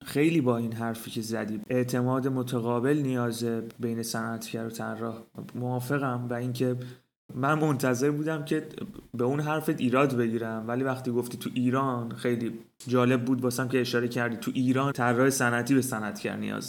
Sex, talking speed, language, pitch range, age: male, 160 wpm, Persian, 120-135 Hz, 30-49